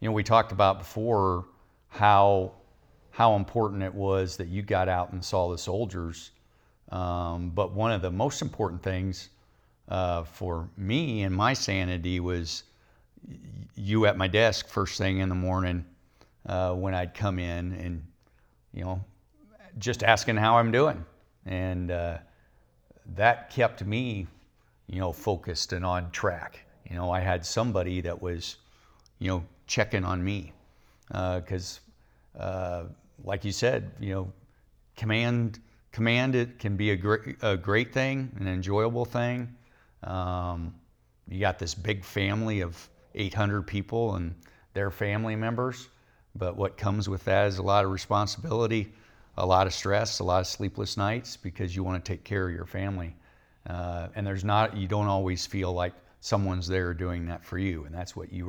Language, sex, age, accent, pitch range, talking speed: English, male, 50-69, American, 90-110 Hz, 165 wpm